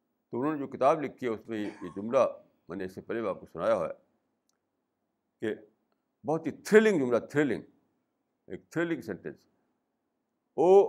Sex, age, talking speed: male, 60-79, 165 wpm